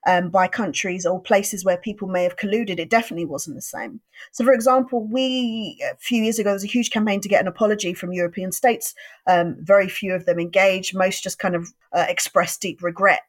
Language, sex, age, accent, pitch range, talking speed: English, female, 30-49, British, 180-220 Hz, 220 wpm